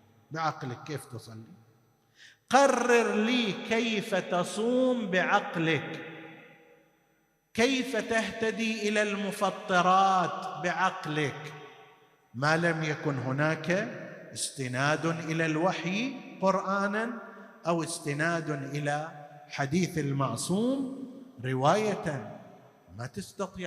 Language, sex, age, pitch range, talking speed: Arabic, male, 50-69, 140-200 Hz, 75 wpm